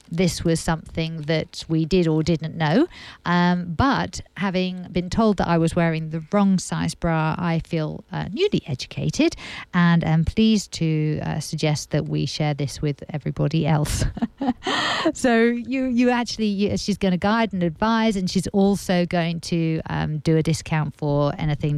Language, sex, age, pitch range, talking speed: English, female, 50-69, 160-195 Hz, 170 wpm